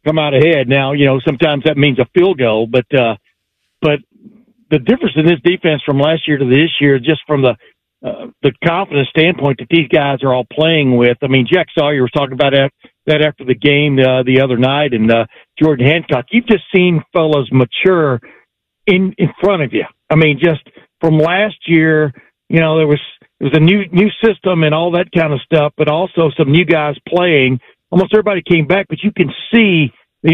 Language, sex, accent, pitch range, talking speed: English, male, American, 140-175 Hz, 210 wpm